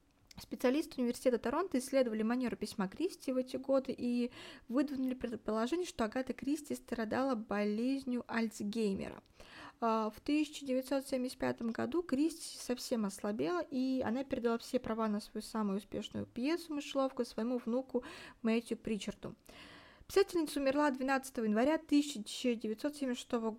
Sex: female